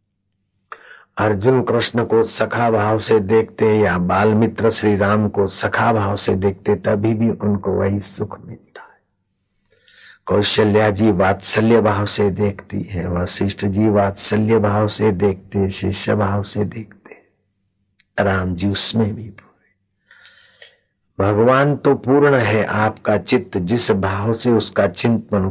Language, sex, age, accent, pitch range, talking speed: Hindi, male, 60-79, native, 95-105 Hz, 130 wpm